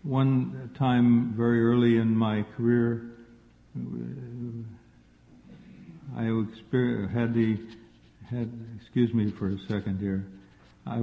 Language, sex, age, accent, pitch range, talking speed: English, male, 60-79, American, 105-120 Hz, 100 wpm